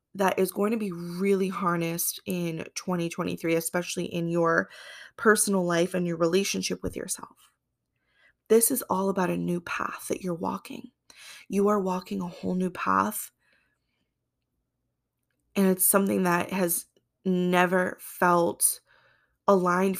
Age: 20-39